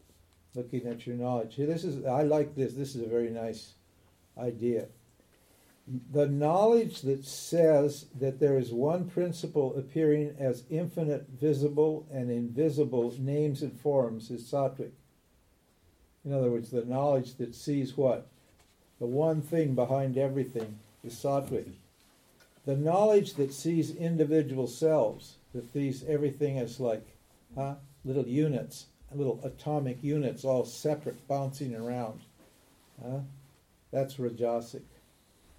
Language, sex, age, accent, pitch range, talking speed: English, male, 60-79, American, 120-145 Hz, 125 wpm